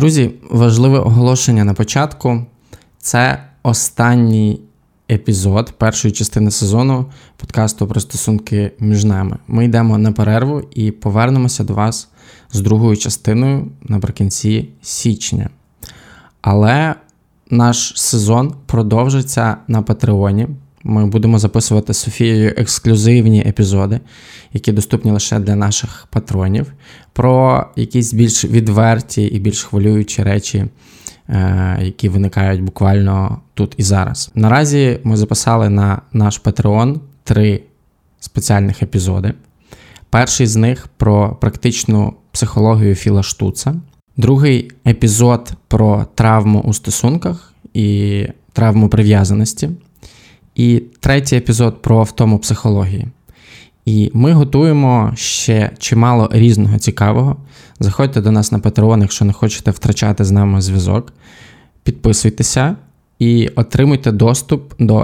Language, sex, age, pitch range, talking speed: Ukrainian, male, 20-39, 105-120 Hz, 110 wpm